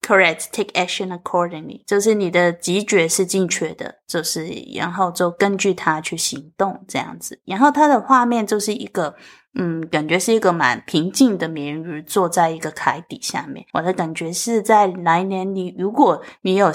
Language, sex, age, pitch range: Chinese, female, 20-39, 160-200 Hz